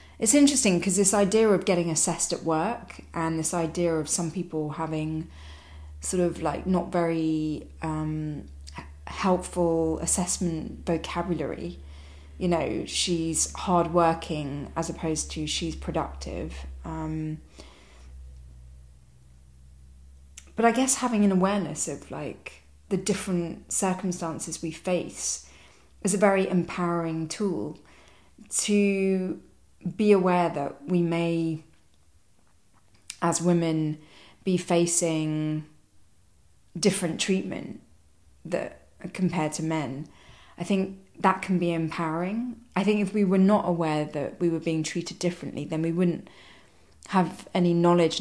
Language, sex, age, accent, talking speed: English, female, 20-39, British, 120 wpm